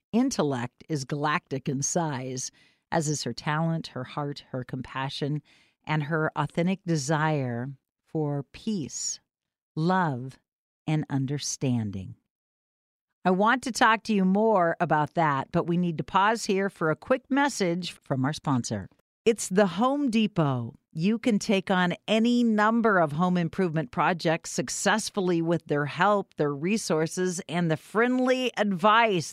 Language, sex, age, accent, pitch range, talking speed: English, female, 50-69, American, 150-215 Hz, 140 wpm